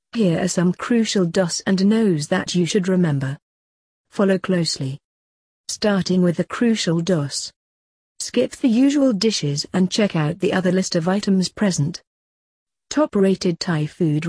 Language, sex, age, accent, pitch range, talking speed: English, female, 40-59, British, 150-195 Hz, 145 wpm